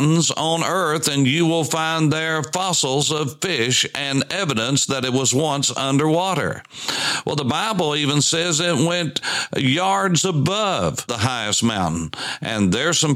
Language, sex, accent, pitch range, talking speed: English, male, American, 115-150 Hz, 145 wpm